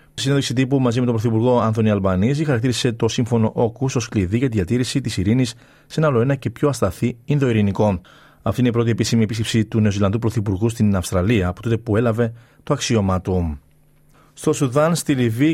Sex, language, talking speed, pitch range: male, Greek, 185 wpm, 110-130 Hz